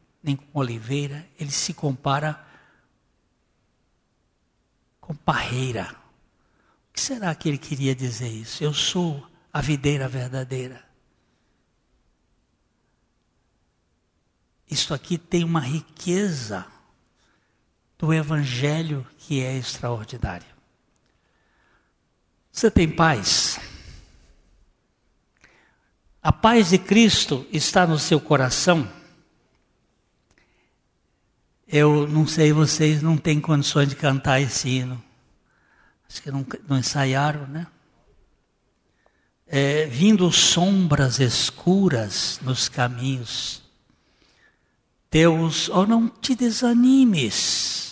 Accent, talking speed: Brazilian, 85 wpm